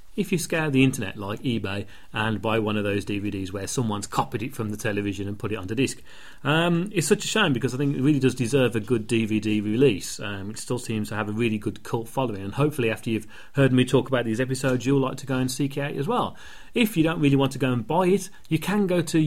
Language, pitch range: English, 115-155 Hz